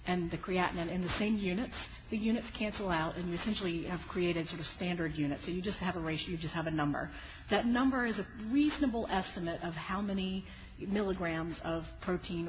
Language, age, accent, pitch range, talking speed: English, 40-59, American, 155-195 Hz, 205 wpm